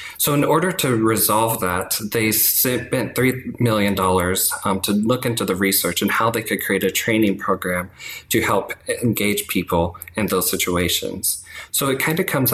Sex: male